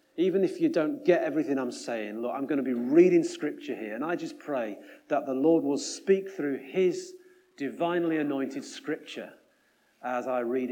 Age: 40-59